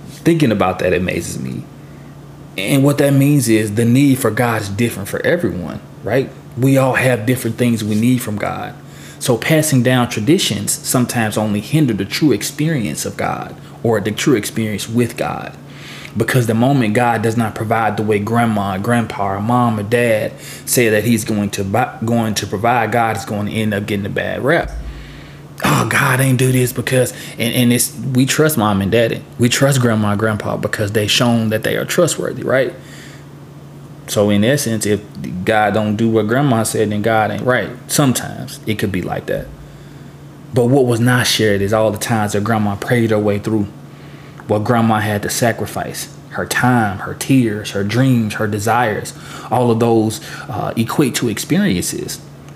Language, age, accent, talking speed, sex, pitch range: English, 20-39, American, 185 wpm, male, 105-130 Hz